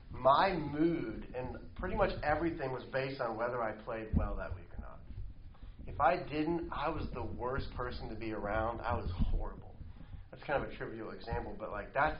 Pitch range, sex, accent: 95-120 Hz, male, American